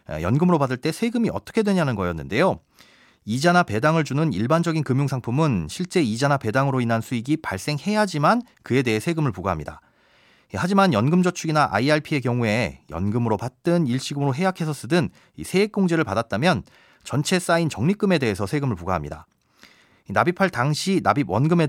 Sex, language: male, Korean